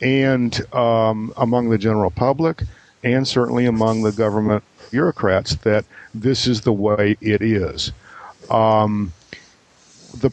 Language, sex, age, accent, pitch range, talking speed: English, male, 50-69, American, 105-120 Hz, 120 wpm